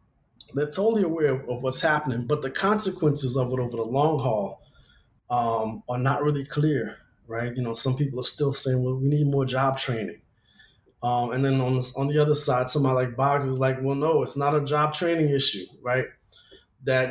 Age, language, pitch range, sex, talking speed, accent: 20-39, English, 115-145 Hz, male, 205 wpm, American